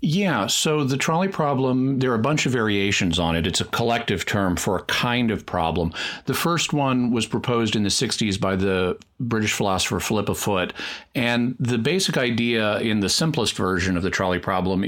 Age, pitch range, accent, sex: 40-59, 100-130 Hz, American, male